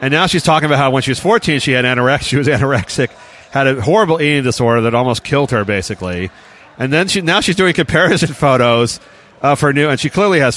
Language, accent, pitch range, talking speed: English, American, 125-170 Hz, 235 wpm